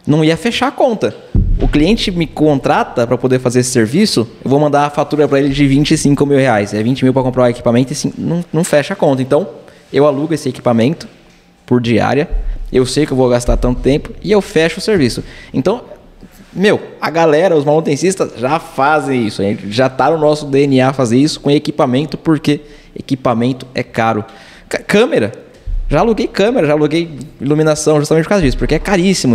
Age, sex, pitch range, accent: 20-39, male, 125-155 Hz, Brazilian